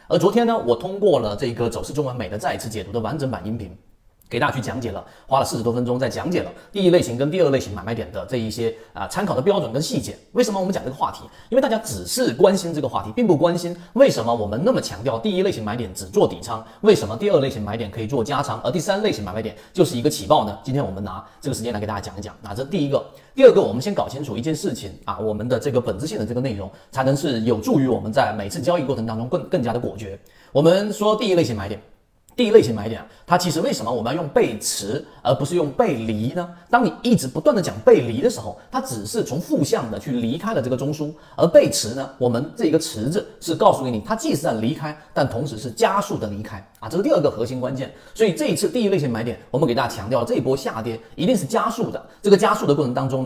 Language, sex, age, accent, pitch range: Chinese, male, 30-49, native, 115-175 Hz